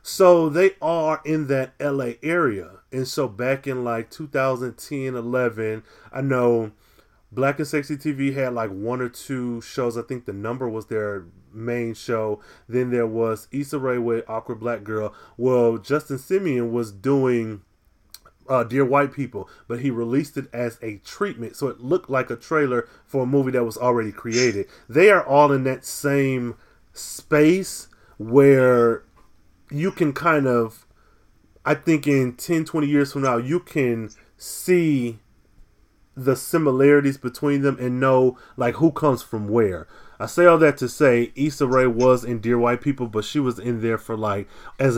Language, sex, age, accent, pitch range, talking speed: English, male, 30-49, American, 115-140 Hz, 170 wpm